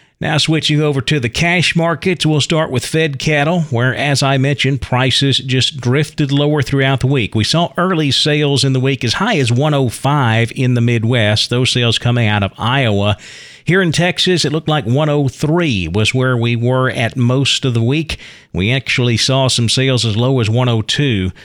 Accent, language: American, English